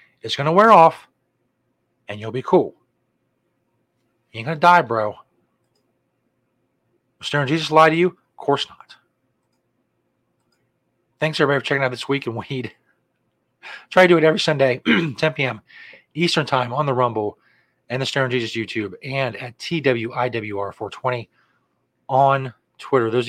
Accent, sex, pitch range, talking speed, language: American, male, 115-145 Hz, 145 wpm, English